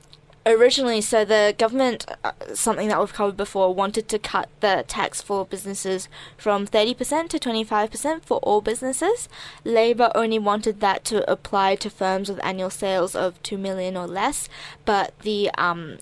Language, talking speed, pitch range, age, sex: English, 155 wpm, 185-215 Hz, 20-39, female